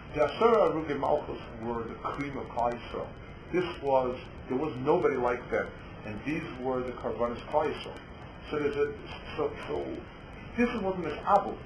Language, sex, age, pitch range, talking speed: English, male, 60-79, 120-160 Hz, 145 wpm